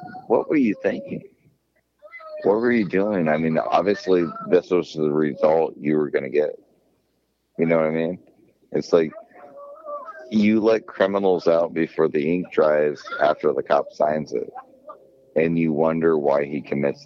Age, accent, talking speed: 50-69, American, 160 wpm